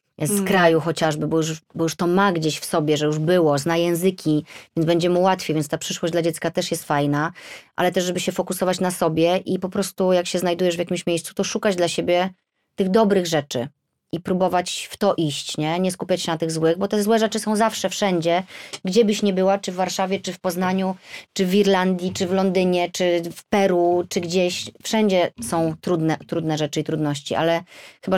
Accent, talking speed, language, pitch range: native, 215 wpm, Polish, 160-195 Hz